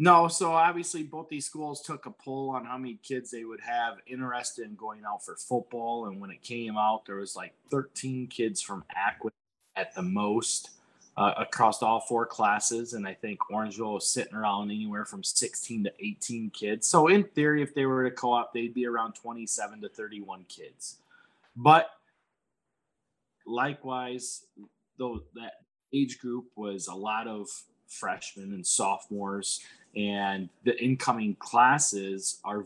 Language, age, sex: English, 20-39, male